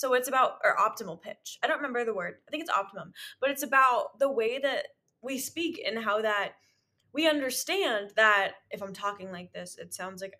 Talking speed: 215 wpm